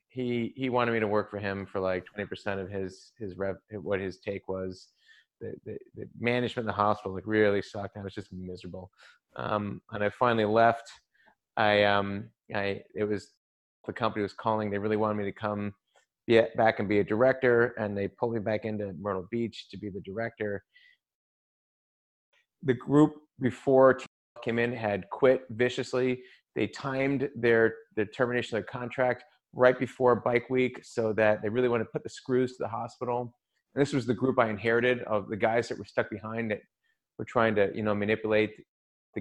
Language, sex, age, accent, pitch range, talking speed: English, male, 30-49, American, 100-125 Hz, 190 wpm